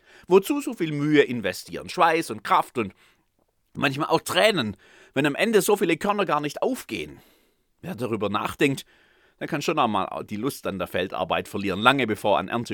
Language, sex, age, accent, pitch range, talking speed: German, male, 30-49, German, 100-155 Hz, 180 wpm